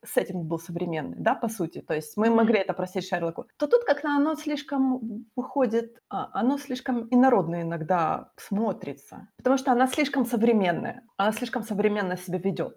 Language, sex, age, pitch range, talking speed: Ukrainian, female, 20-39, 190-245 Hz, 170 wpm